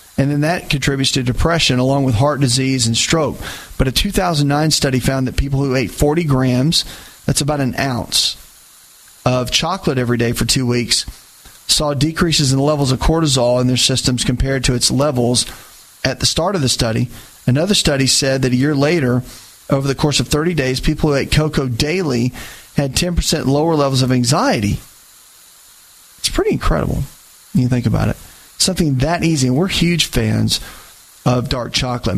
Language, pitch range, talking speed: English, 125-150 Hz, 175 wpm